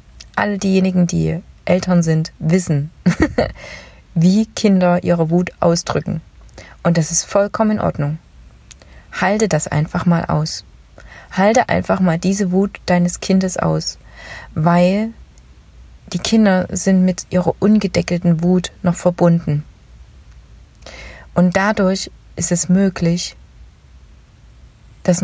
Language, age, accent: German, 30-49, German